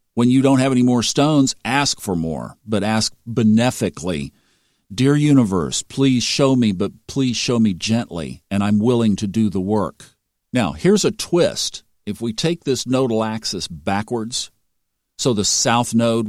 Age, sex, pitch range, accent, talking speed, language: 50-69, male, 110-145 Hz, American, 165 wpm, English